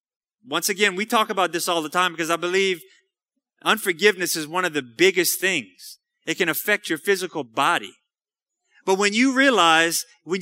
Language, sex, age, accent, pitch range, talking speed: English, male, 30-49, American, 170-250 Hz, 175 wpm